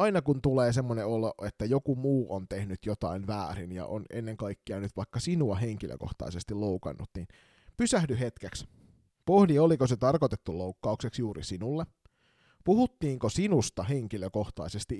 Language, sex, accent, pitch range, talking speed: Finnish, male, native, 100-135 Hz, 135 wpm